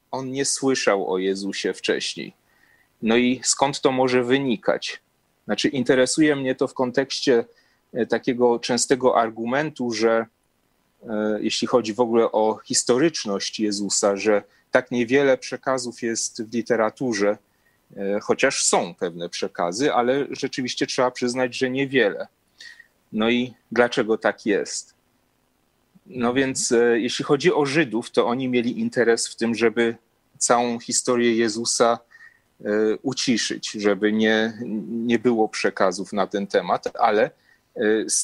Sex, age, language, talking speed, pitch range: male, 30-49, Polish, 120 wpm, 115-135 Hz